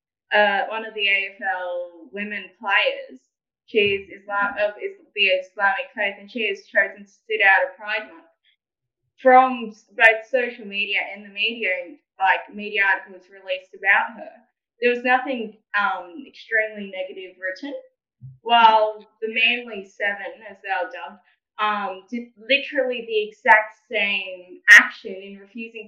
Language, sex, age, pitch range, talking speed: English, female, 10-29, 200-255 Hz, 145 wpm